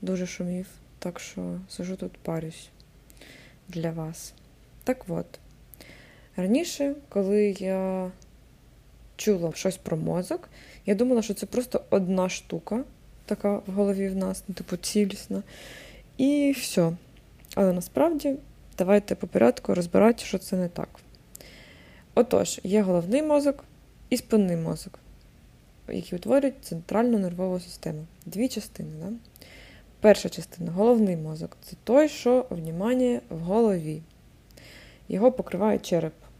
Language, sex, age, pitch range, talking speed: Ukrainian, female, 20-39, 175-225 Hz, 120 wpm